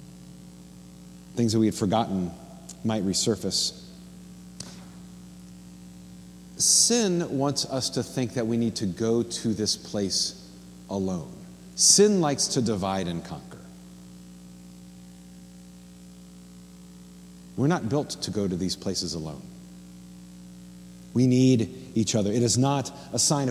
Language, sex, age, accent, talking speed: English, male, 40-59, American, 115 wpm